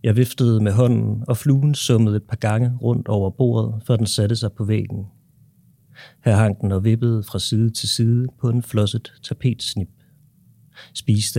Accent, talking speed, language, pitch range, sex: native, 175 wpm, Danish, 105-125 Hz, male